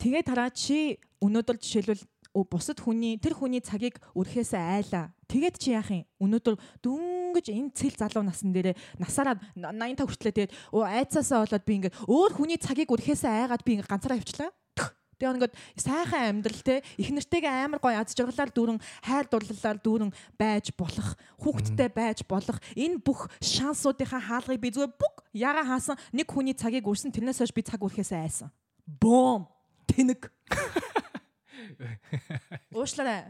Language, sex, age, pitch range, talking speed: English, female, 20-39, 205-275 Hz, 105 wpm